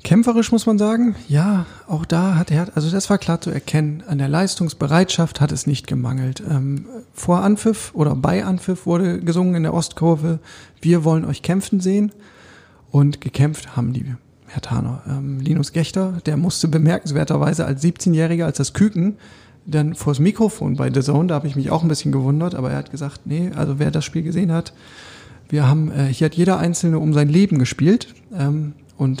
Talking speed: 190 wpm